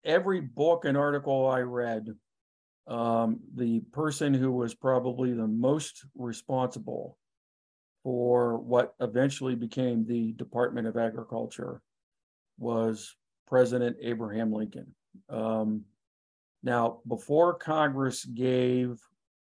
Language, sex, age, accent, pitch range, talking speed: English, male, 50-69, American, 115-130 Hz, 100 wpm